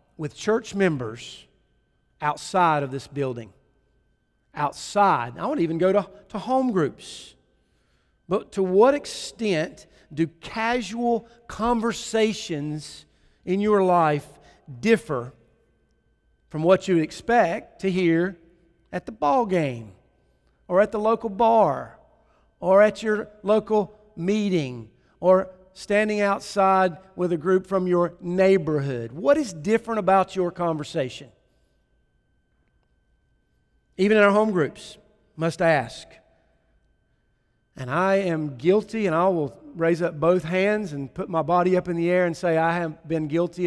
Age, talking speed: 50-69, 130 wpm